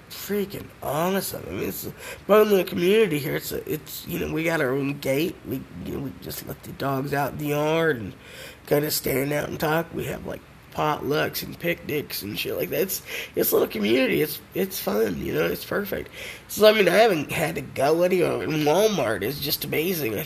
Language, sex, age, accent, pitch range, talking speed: English, male, 20-39, American, 130-170 Hz, 220 wpm